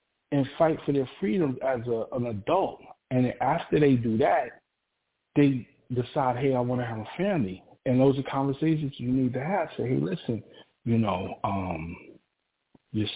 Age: 40-59